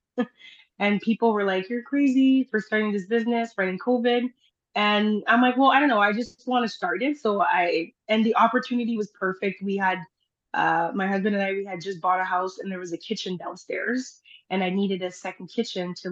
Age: 20-39